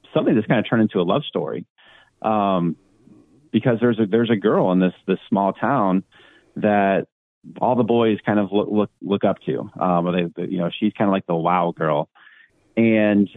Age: 30-49